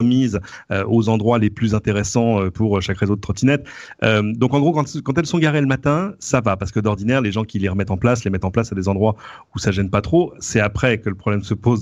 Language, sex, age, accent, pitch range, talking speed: French, male, 40-59, French, 100-120 Hz, 275 wpm